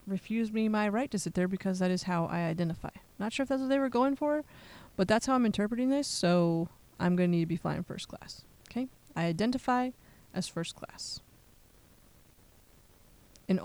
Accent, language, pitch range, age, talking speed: American, English, 170-215 Hz, 20-39, 200 wpm